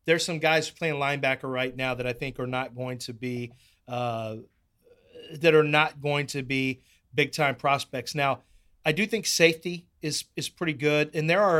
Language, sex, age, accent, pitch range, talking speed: English, male, 30-49, American, 130-155 Hz, 190 wpm